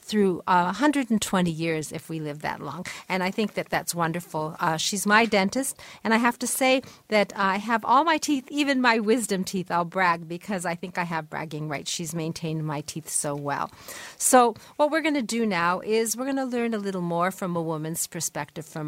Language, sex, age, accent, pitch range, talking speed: English, female, 50-69, American, 165-215 Hz, 220 wpm